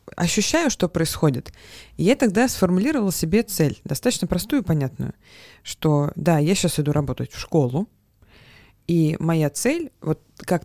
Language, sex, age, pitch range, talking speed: Russian, female, 20-39, 145-190 Hz, 145 wpm